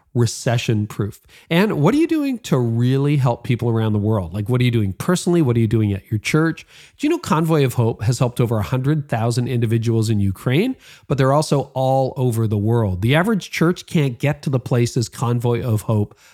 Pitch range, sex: 115-150 Hz, male